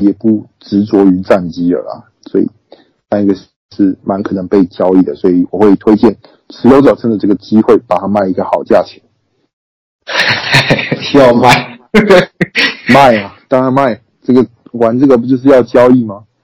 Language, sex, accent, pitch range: Chinese, male, native, 100-125 Hz